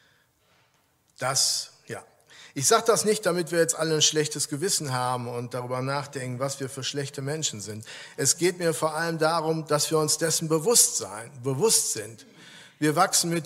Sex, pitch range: male, 130-160 Hz